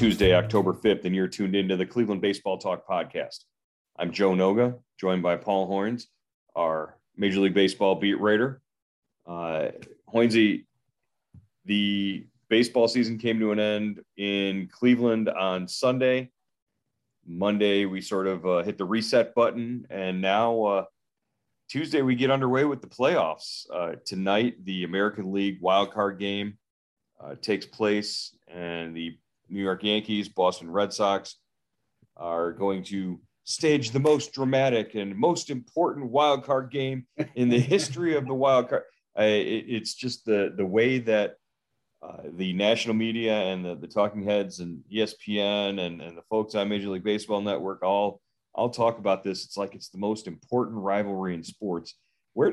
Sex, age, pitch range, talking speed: male, 30-49, 95-115 Hz, 155 wpm